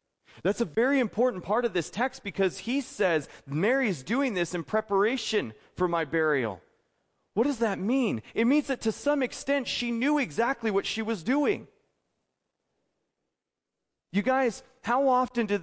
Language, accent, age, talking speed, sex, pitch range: English, American, 40-59, 155 wpm, male, 165-245 Hz